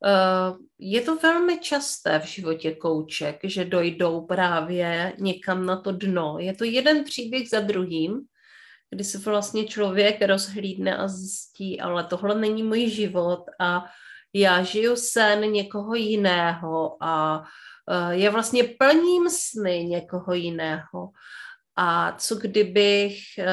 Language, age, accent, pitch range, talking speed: Czech, 30-49, native, 175-220 Hz, 120 wpm